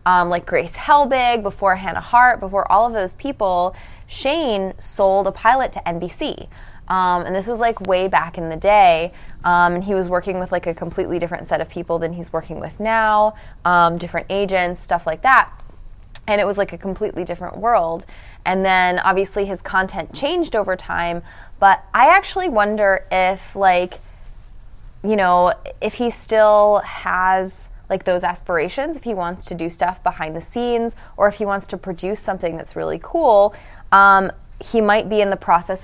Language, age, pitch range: English, 20-39, 175-210 Hz